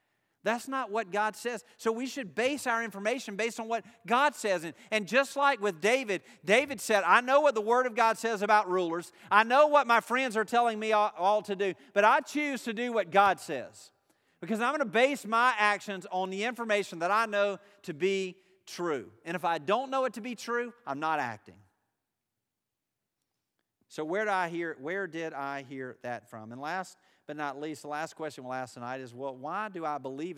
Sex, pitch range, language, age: male, 145-220 Hz, English, 40-59